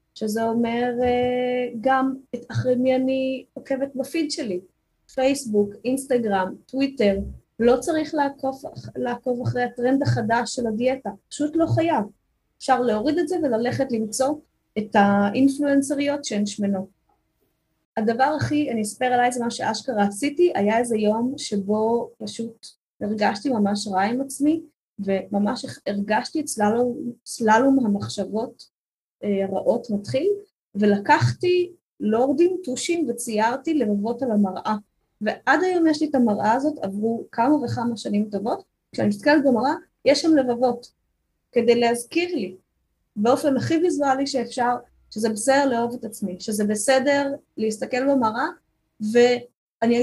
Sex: female